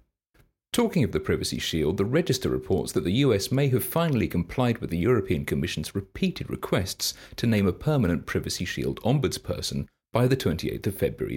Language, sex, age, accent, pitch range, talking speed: English, male, 40-59, British, 90-130 Hz, 175 wpm